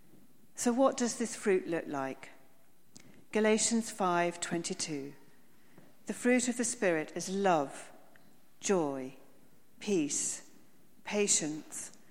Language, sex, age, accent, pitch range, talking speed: English, female, 40-59, British, 160-220 Hz, 95 wpm